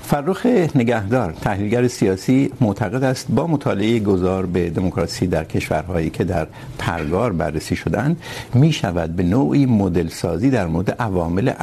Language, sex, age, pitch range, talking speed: Urdu, male, 60-79, 90-125 Hz, 135 wpm